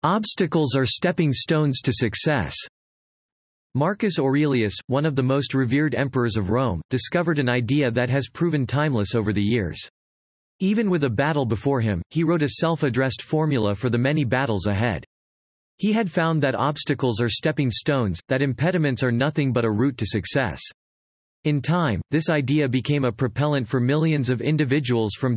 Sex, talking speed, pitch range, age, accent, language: male, 170 wpm, 115-150 Hz, 40-59, American, English